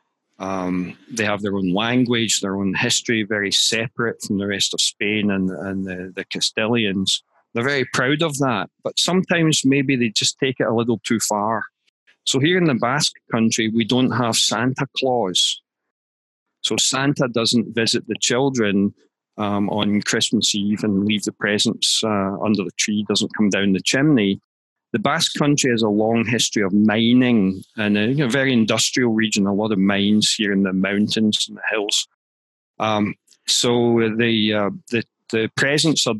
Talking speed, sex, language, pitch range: 175 wpm, male, English, 100-120 Hz